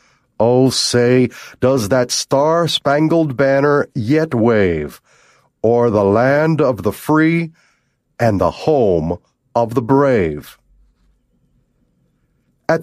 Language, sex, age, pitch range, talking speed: English, male, 50-69, 115-160 Hz, 100 wpm